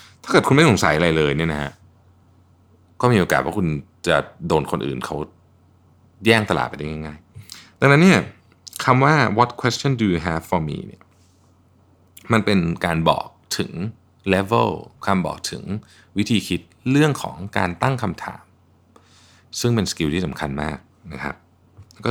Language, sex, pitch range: Thai, male, 85-110 Hz